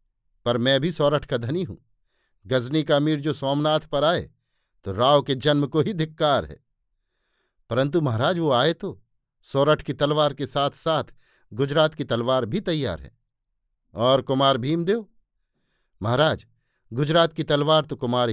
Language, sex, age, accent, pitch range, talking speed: Hindi, male, 50-69, native, 120-150 Hz, 160 wpm